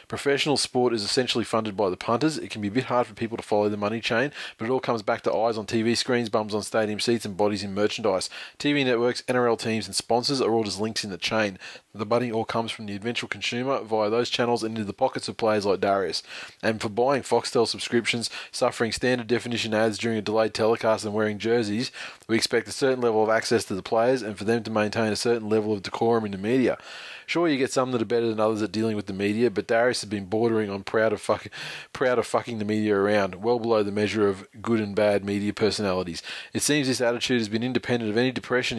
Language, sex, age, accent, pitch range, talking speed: English, male, 20-39, Australian, 105-120 Hz, 245 wpm